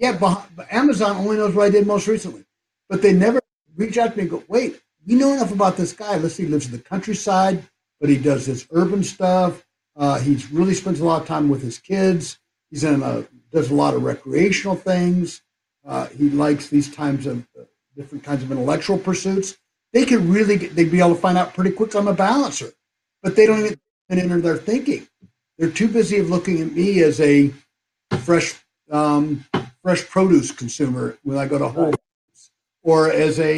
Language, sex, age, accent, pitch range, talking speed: Turkish, male, 60-79, American, 150-200 Hz, 205 wpm